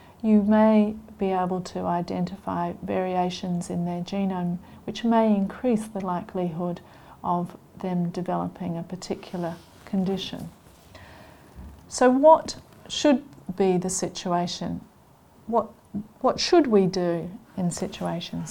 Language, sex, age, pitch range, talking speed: English, female, 40-59, 175-220 Hz, 110 wpm